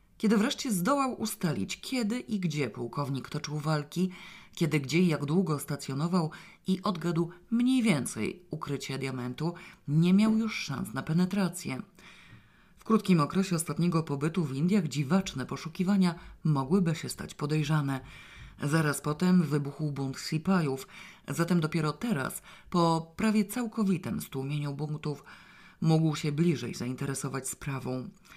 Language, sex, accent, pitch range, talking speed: Polish, female, native, 145-190 Hz, 125 wpm